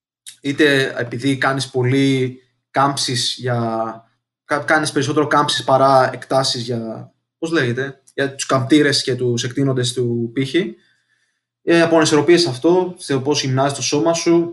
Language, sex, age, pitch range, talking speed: Greek, male, 20-39, 130-180 Hz, 125 wpm